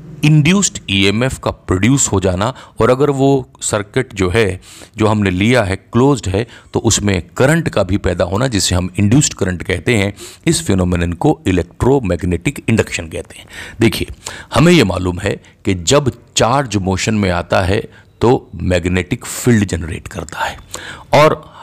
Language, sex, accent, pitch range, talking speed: Hindi, male, native, 95-125 Hz, 160 wpm